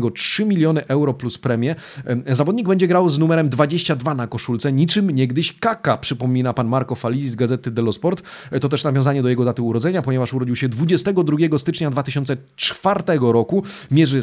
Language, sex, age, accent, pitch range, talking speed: Polish, male, 30-49, native, 125-165 Hz, 165 wpm